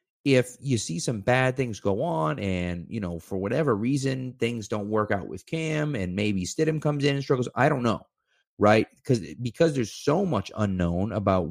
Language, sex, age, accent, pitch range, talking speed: English, male, 30-49, American, 100-145 Hz, 195 wpm